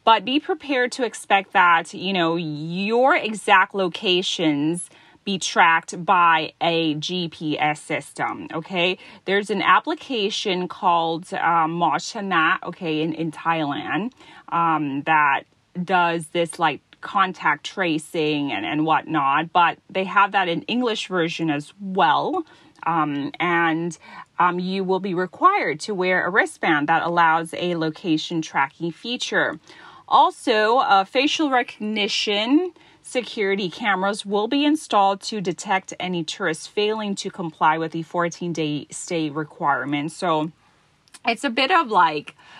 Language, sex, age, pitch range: Thai, female, 30-49, 165-225 Hz